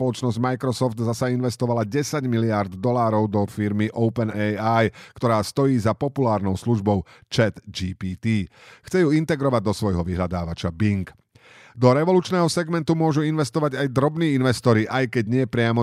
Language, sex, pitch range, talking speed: Slovak, male, 105-140 Hz, 135 wpm